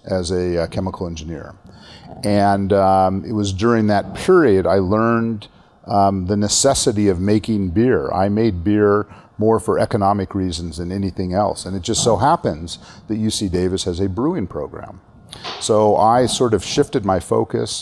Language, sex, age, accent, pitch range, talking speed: English, male, 40-59, American, 90-105 Hz, 160 wpm